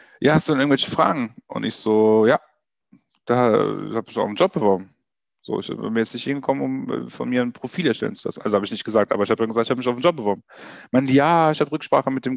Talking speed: 260 wpm